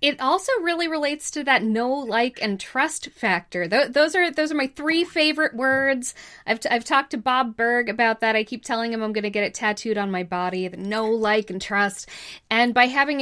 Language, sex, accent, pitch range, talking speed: English, female, American, 200-260 Hz, 220 wpm